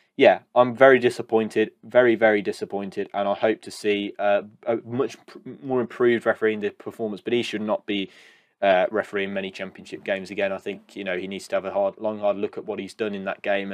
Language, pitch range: English, 110-120 Hz